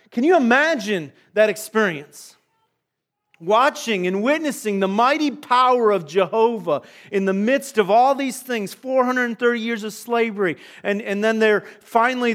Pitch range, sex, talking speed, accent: 185-230 Hz, male, 140 wpm, American